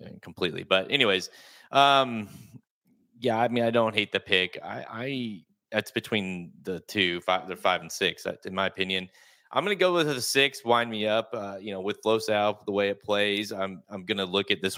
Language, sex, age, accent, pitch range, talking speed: English, male, 30-49, American, 95-110 Hz, 205 wpm